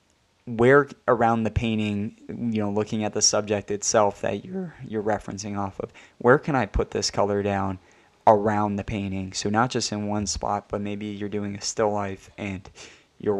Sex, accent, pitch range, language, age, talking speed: male, American, 100-110 Hz, English, 20-39, 190 wpm